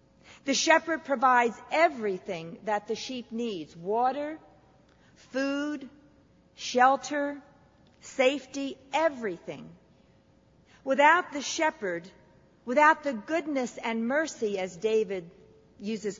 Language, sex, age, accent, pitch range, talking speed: English, female, 50-69, American, 205-275 Hz, 90 wpm